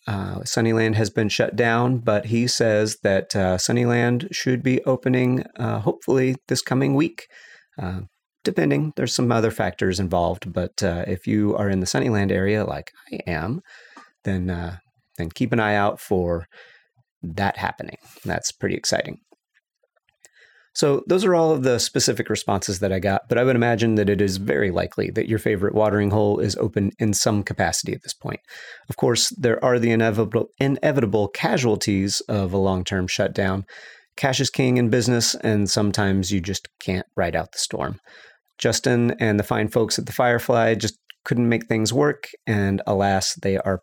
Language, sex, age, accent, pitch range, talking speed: English, male, 40-59, American, 95-120 Hz, 175 wpm